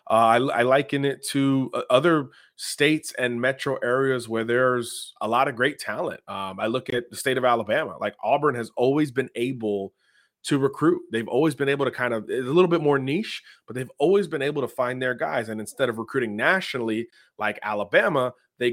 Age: 30-49